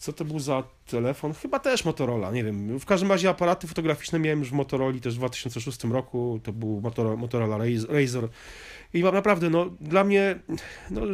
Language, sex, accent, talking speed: Polish, male, native, 185 wpm